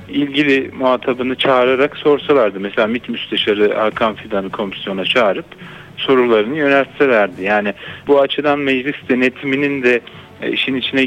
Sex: male